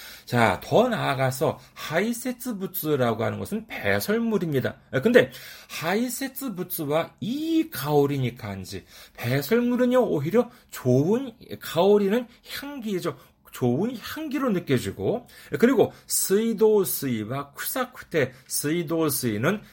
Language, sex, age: Korean, male, 40-59